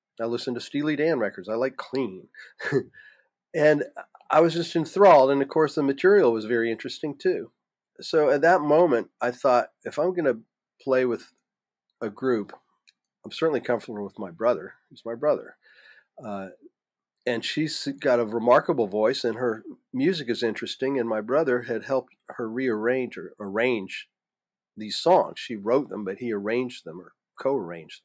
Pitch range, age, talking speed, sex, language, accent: 115-150 Hz, 40-59, 165 wpm, male, English, American